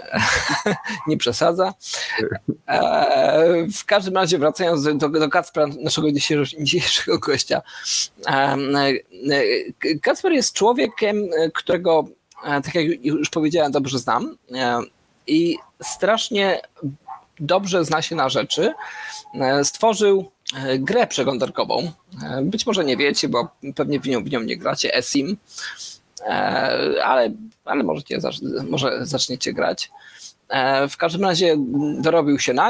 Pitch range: 140-195 Hz